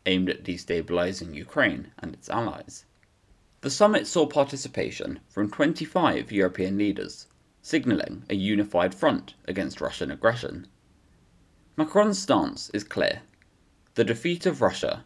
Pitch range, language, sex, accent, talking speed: 90-135 Hz, English, male, British, 120 wpm